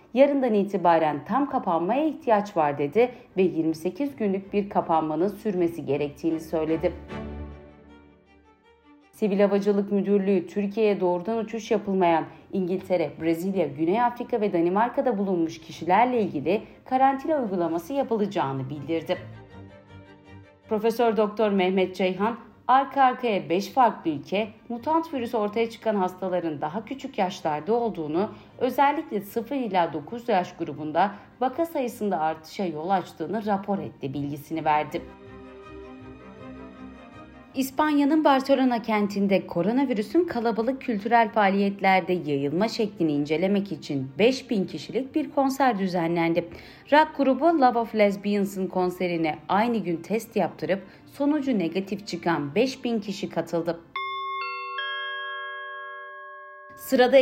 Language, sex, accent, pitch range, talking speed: Turkish, female, native, 165-240 Hz, 105 wpm